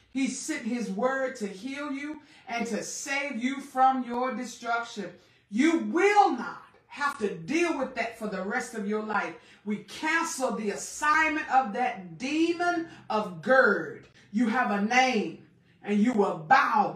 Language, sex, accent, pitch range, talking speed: English, female, American, 200-270 Hz, 160 wpm